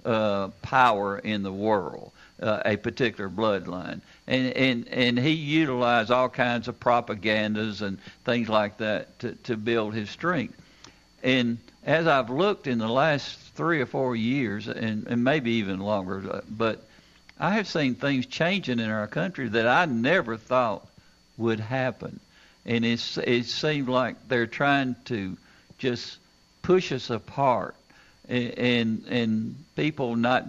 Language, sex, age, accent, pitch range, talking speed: English, male, 60-79, American, 110-130 Hz, 145 wpm